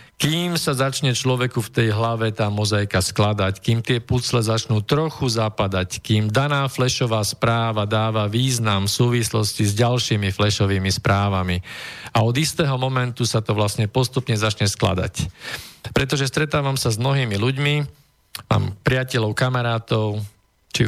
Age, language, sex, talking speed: 50-69, Slovak, male, 135 wpm